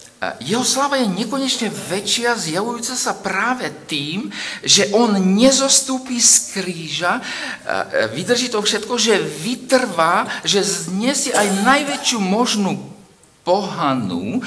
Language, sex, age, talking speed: Slovak, male, 50-69, 105 wpm